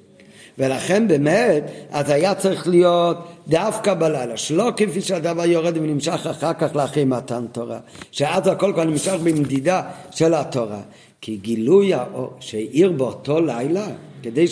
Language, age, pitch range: Hebrew, 50-69, 135-185 Hz